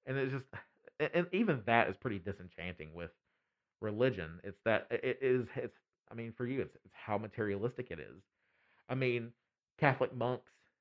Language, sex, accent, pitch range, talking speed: English, male, American, 95-125 Hz, 165 wpm